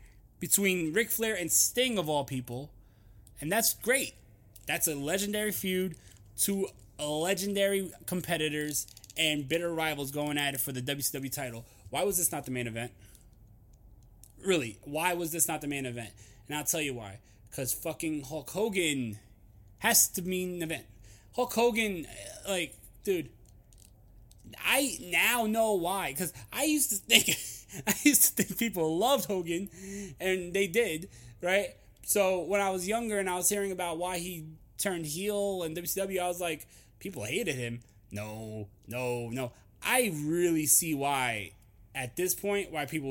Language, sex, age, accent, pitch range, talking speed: English, male, 20-39, American, 120-180 Hz, 160 wpm